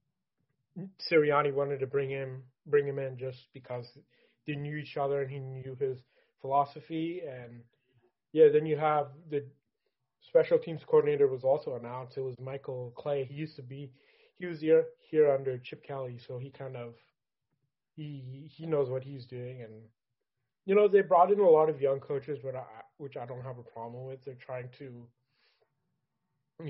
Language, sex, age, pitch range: English, male, 30-49, 130-150 Hz